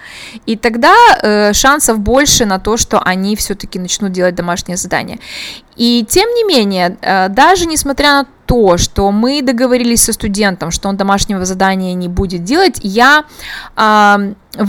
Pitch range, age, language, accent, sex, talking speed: 200-270 Hz, 20-39, Russian, native, female, 150 wpm